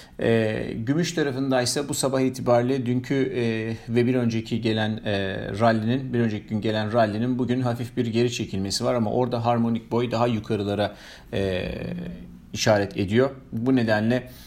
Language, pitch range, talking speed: Turkish, 105-125 Hz, 150 wpm